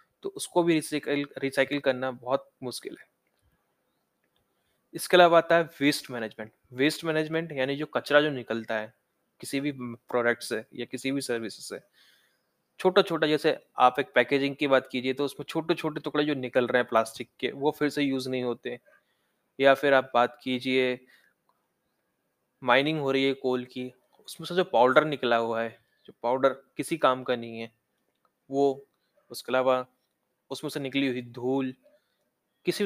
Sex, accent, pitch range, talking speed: male, native, 125-155 Hz, 165 wpm